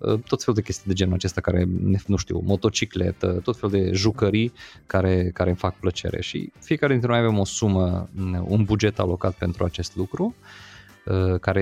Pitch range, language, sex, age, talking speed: 95-105 Hz, Romanian, male, 20-39, 175 wpm